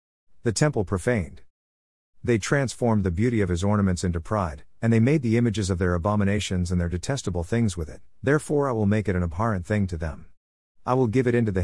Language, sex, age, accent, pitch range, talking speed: English, male, 50-69, American, 90-120 Hz, 215 wpm